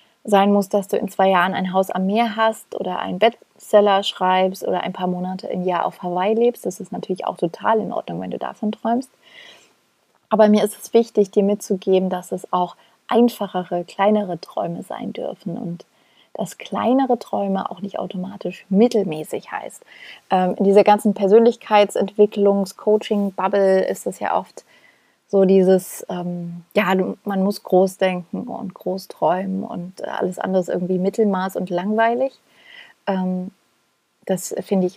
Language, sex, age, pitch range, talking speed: German, female, 30-49, 185-210 Hz, 155 wpm